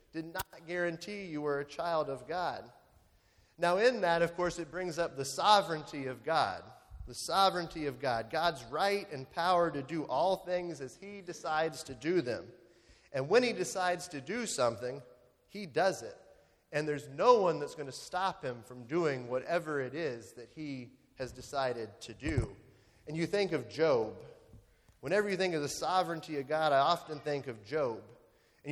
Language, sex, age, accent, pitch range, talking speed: English, male, 30-49, American, 135-180 Hz, 185 wpm